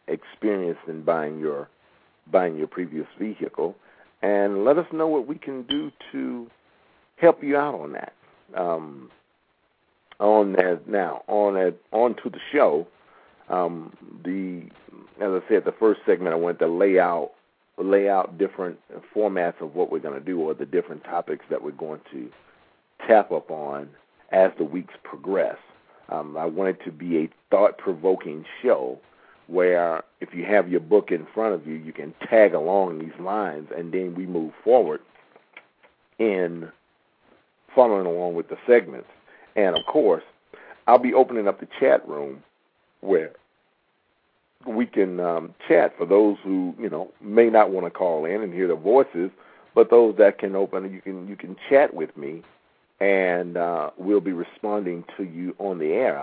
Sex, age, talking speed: male, 50-69, 170 wpm